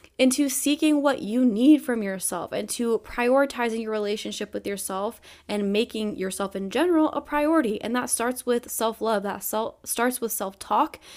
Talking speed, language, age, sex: 160 wpm, English, 20-39, female